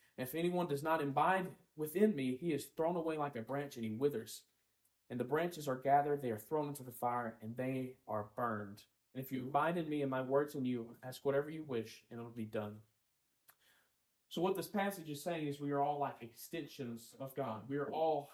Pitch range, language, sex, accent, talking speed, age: 120-150 Hz, English, male, American, 225 wpm, 30-49